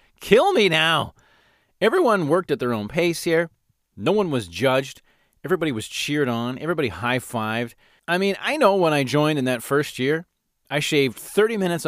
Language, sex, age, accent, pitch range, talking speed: English, male, 30-49, American, 110-170 Hz, 175 wpm